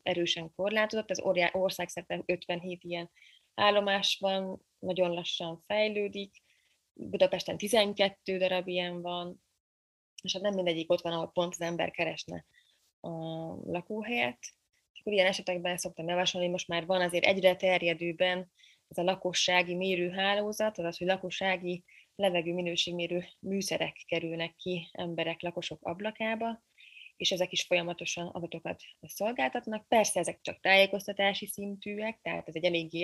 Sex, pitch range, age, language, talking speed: female, 175-200 Hz, 20-39, Hungarian, 130 wpm